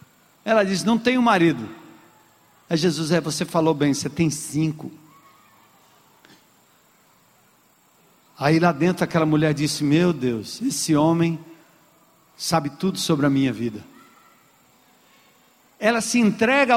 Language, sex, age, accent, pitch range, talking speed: Portuguese, male, 50-69, Brazilian, 210-275 Hz, 120 wpm